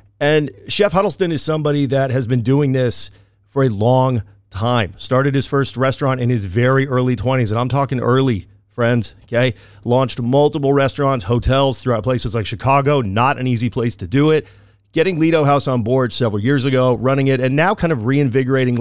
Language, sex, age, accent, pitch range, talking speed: English, male, 40-59, American, 120-140 Hz, 190 wpm